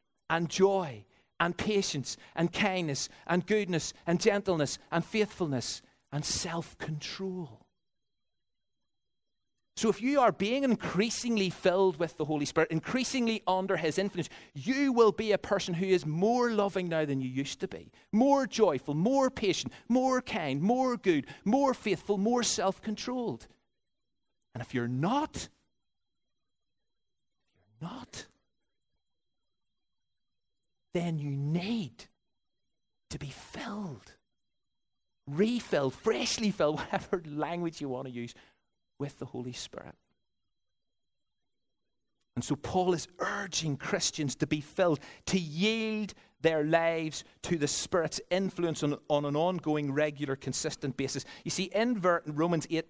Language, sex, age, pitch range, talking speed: English, male, 50-69, 145-205 Hz, 125 wpm